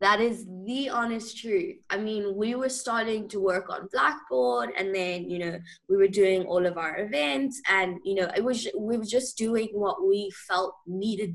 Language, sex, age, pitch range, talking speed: English, female, 20-39, 175-225 Hz, 200 wpm